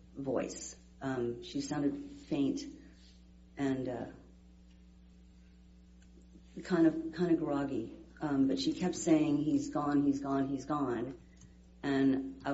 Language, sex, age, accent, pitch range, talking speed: English, female, 40-59, American, 120-155 Hz, 120 wpm